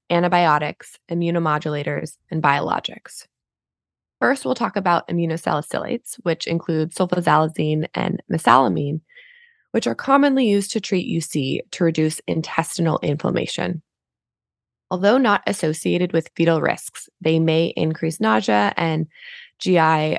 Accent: American